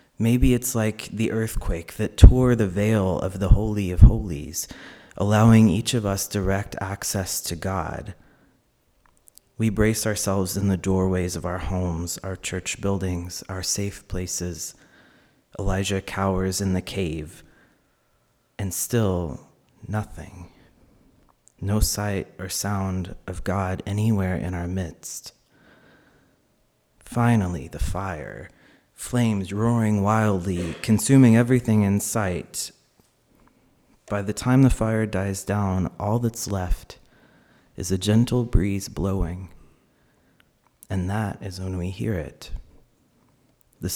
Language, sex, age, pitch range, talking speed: English, male, 30-49, 90-110 Hz, 120 wpm